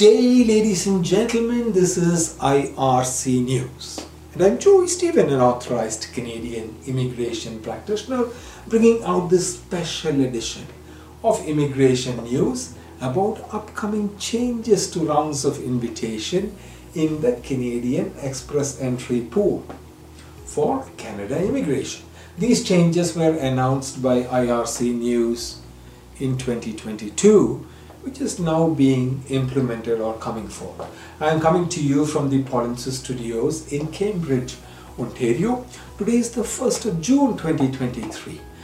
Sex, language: male, English